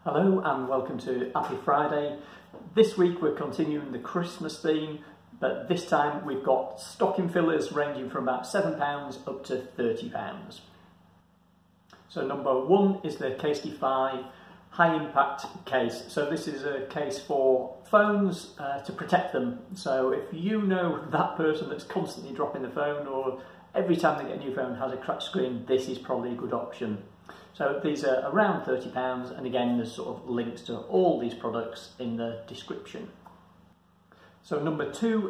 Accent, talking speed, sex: British, 165 wpm, male